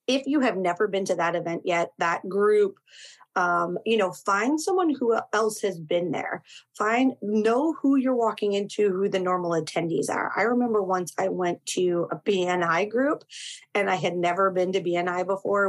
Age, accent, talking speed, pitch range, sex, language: 30-49, American, 185 wpm, 175-210 Hz, female, English